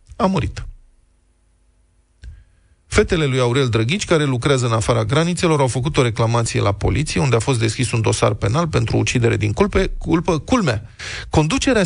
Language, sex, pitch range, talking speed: Romanian, male, 110-170 Hz, 150 wpm